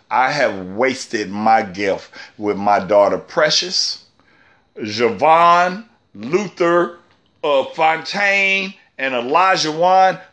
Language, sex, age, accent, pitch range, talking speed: English, male, 50-69, American, 155-215 Hz, 95 wpm